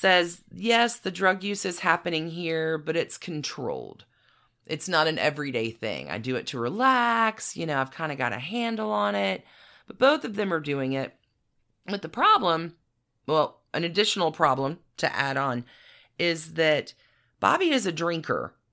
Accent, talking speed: American, 175 wpm